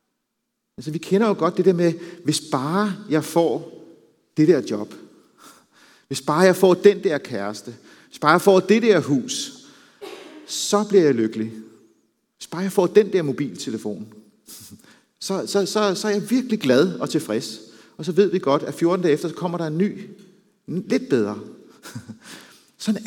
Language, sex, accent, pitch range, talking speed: Danish, male, native, 140-205 Hz, 165 wpm